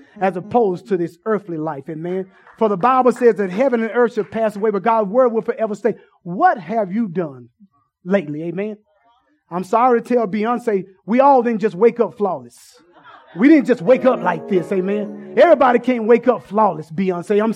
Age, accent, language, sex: 30-49, American, English, male